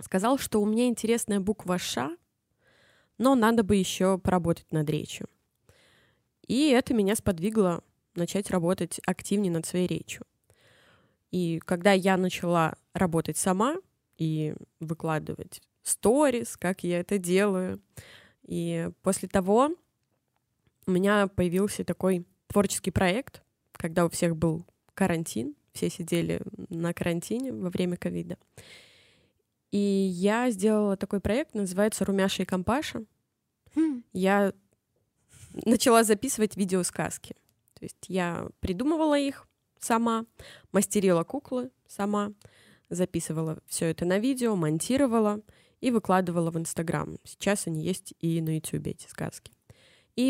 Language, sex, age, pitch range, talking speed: Russian, female, 20-39, 170-215 Hz, 120 wpm